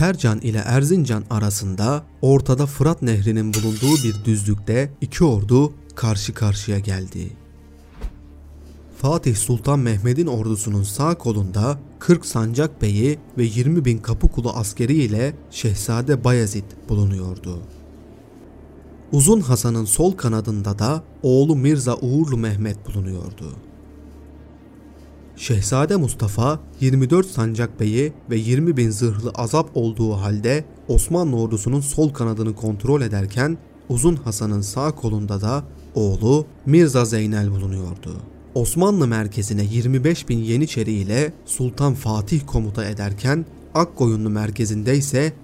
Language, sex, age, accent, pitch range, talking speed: Turkish, male, 30-49, native, 105-140 Hz, 110 wpm